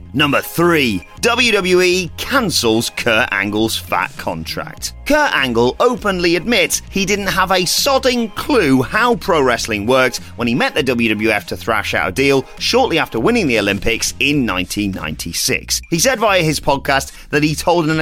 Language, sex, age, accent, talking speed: English, male, 30-49, British, 160 wpm